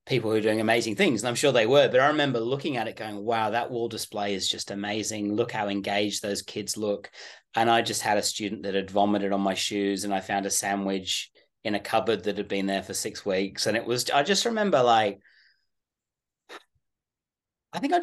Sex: male